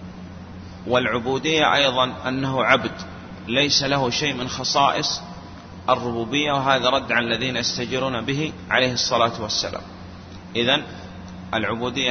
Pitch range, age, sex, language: 95-130 Hz, 30-49, male, Arabic